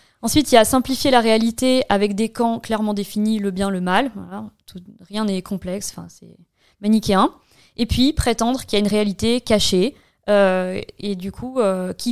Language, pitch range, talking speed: French, 200-235 Hz, 195 wpm